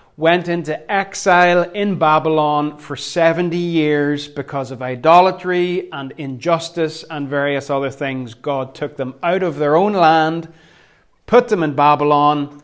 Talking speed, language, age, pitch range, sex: 140 wpm, English, 30-49, 145-175 Hz, male